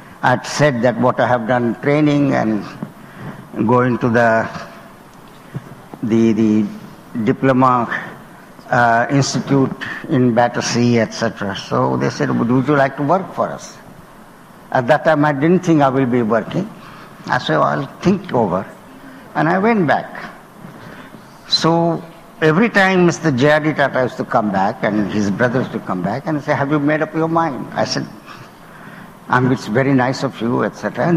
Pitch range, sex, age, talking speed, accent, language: 120-150 Hz, male, 60-79, 160 wpm, Indian, English